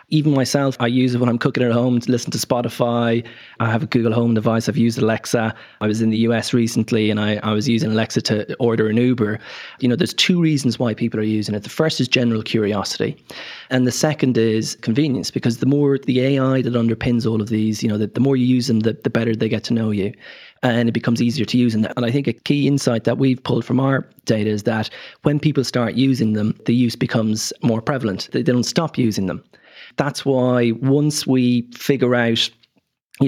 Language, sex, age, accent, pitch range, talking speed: English, male, 30-49, Irish, 110-130 Hz, 235 wpm